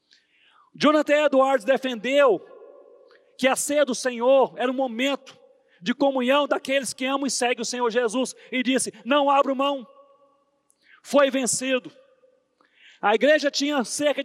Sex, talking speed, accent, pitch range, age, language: male, 135 wpm, Brazilian, 245-290 Hz, 40-59, Portuguese